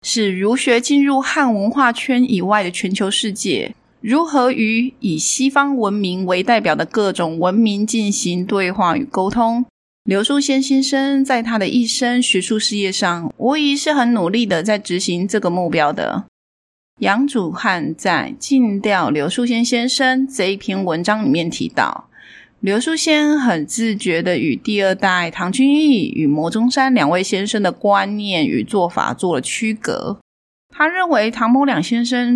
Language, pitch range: Chinese, 195-260 Hz